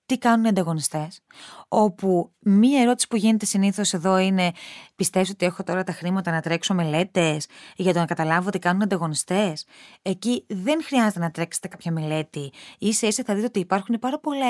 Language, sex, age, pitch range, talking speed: Greek, female, 20-39, 175-250 Hz, 180 wpm